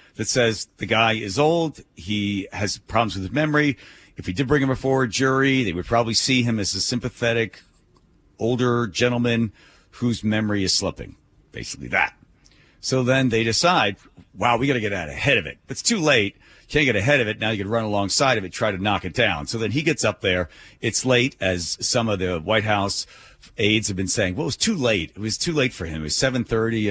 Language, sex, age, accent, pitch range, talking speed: English, male, 50-69, American, 95-120 Hz, 225 wpm